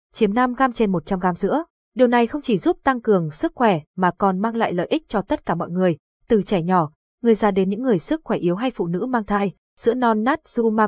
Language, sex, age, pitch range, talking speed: Vietnamese, female, 20-39, 190-240 Hz, 260 wpm